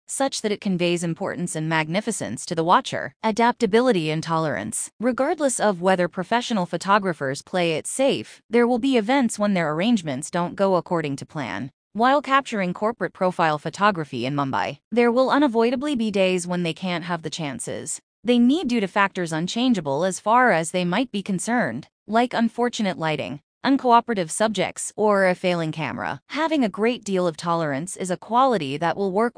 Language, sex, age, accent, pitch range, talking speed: English, female, 20-39, American, 170-235 Hz, 175 wpm